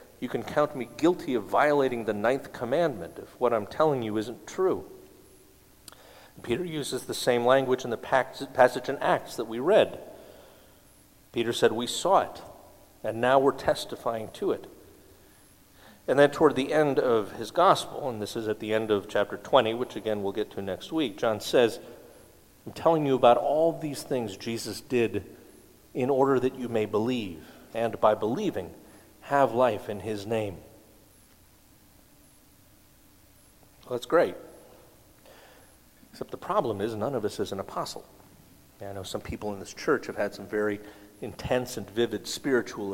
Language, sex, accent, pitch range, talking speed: English, male, American, 105-130 Hz, 165 wpm